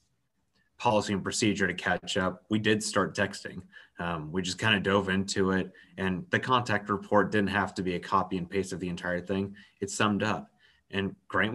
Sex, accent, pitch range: male, American, 90-105 Hz